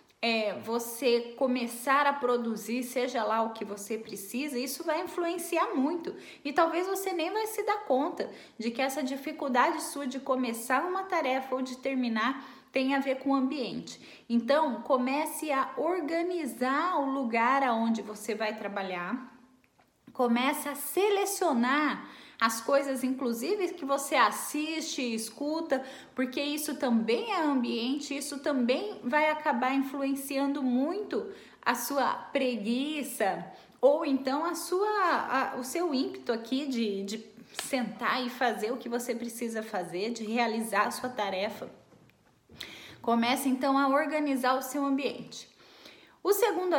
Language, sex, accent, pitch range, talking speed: Portuguese, female, Brazilian, 240-305 Hz, 135 wpm